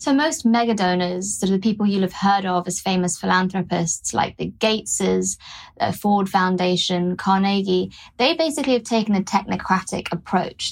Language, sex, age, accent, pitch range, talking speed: English, female, 20-39, British, 190-240 Hz, 160 wpm